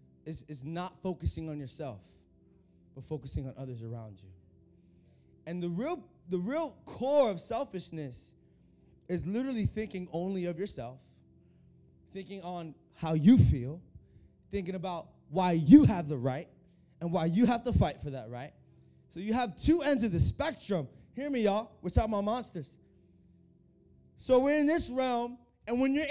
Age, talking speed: 20-39, 160 wpm